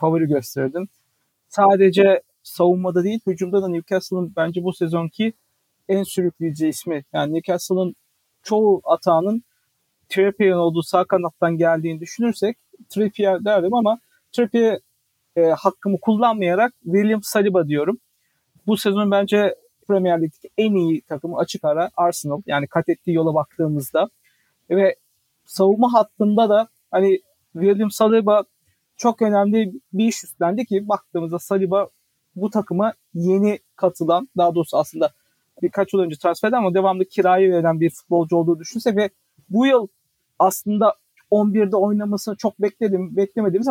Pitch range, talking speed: 175-220 Hz, 125 wpm